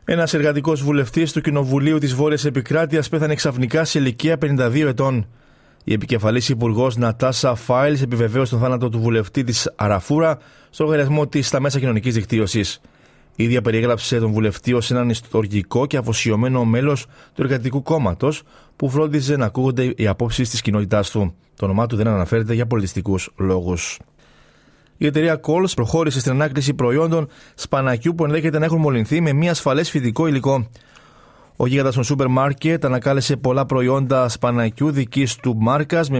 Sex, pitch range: male, 115-145 Hz